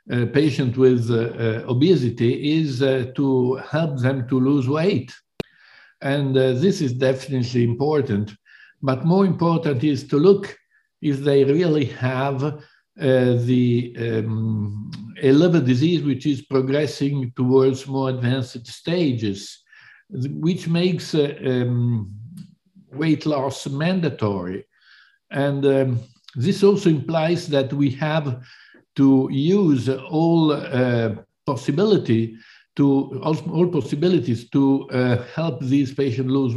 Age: 60-79